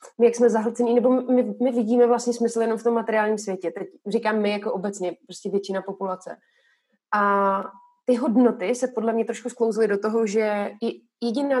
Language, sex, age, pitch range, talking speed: Slovak, female, 20-39, 200-240 Hz, 180 wpm